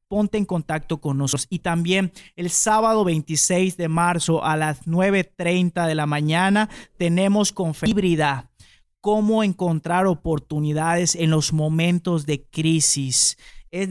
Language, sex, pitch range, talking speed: Spanish, male, 155-195 Hz, 130 wpm